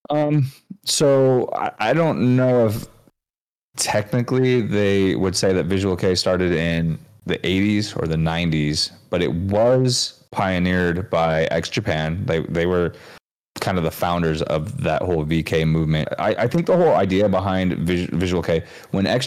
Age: 30-49